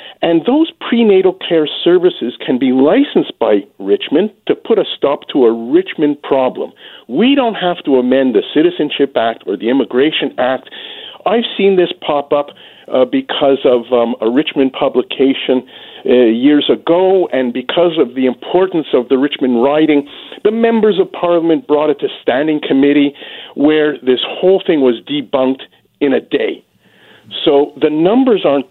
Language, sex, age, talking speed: English, male, 50-69, 160 wpm